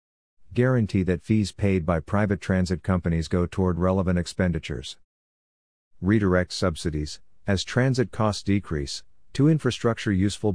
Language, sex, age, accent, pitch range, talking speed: English, male, 50-69, American, 85-100 Hz, 120 wpm